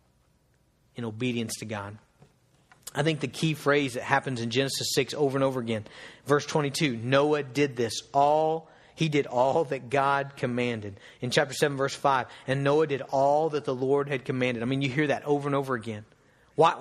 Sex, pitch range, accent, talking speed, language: male, 120-150 Hz, American, 195 wpm, English